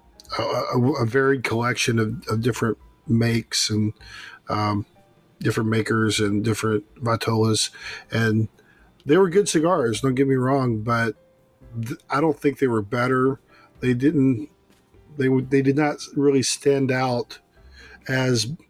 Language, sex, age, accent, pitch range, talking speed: English, male, 40-59, American, 110-135 Hz, 135 wpm